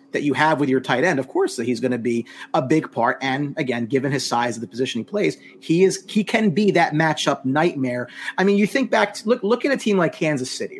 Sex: male